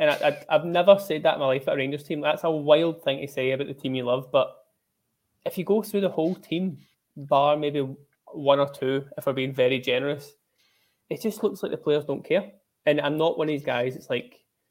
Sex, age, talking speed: male, 20-39, 245 wpm